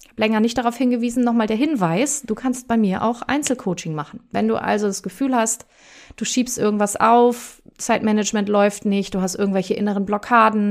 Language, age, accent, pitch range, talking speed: German, 30-49, German, 200-245 Hz, 180 wpm